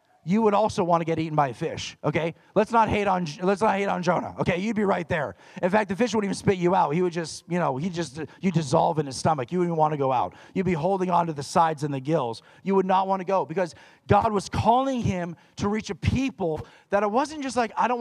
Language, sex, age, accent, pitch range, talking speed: English, male, 40-59, American, 135-195 Hz, 280 wpm